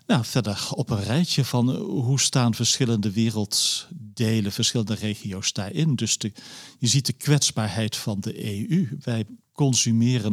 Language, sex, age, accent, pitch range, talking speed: Dutch, male, 50-69, Dutch, 105-130 Hz, 135 wpm